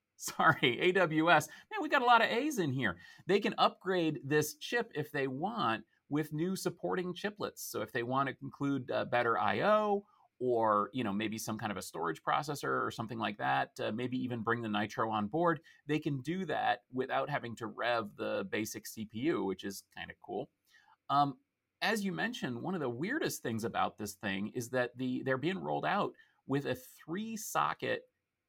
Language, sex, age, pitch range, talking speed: English, male, 30-49, 110-170 Hz, 195 wpm